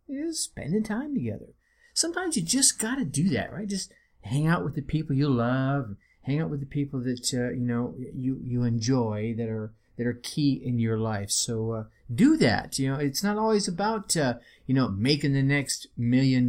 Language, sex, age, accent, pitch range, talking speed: English, male, 30-49, American, 115-155 Hz, 205 wpm